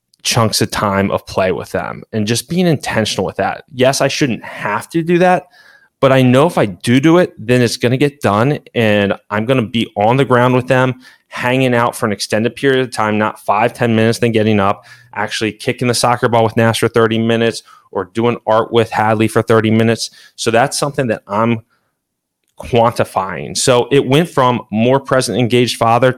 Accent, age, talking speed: American, 20-39, 210 wpm